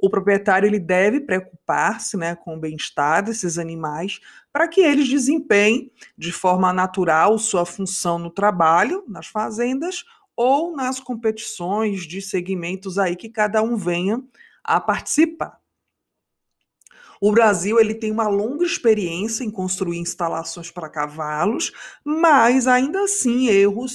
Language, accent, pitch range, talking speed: Portuguese, Brazilian, 180-235 Hz, 130 wpm